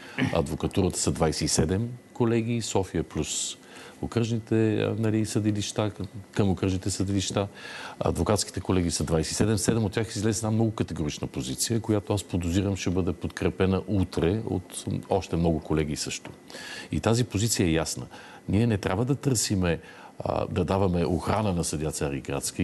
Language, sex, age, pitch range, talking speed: Bulgarian, male, 50-69, 85-110 Hz, 140 wpm